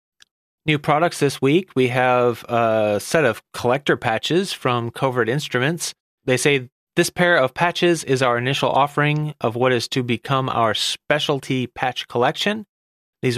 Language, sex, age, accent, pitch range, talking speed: English, male, 30-49, American, 125-160 Hz, 150 wpm